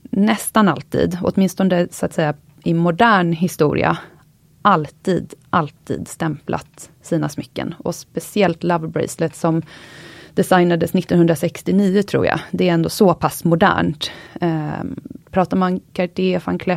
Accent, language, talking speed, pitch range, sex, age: native, Swedish, 120 wpm, 160-200 Hz, female, 30-49